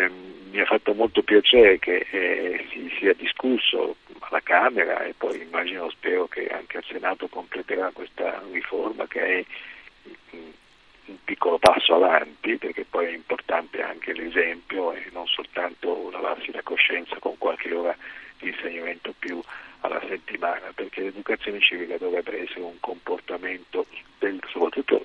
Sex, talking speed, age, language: male, 140 wpm, 50-69, Italian